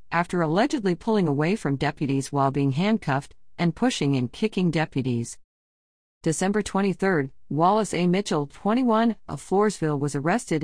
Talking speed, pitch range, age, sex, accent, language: 135 wpm, 145-205 Hz, 50-69, female, American, English